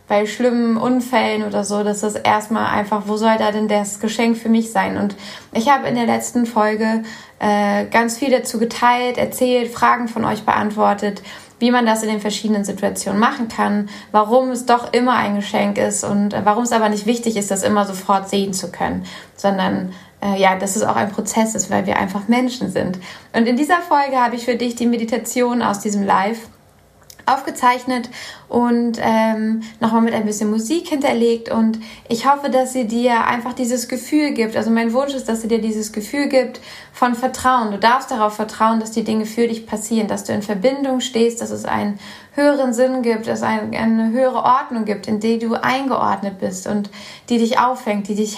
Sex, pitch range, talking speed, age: female, 210-245 Hz, 200 wpm, 20-39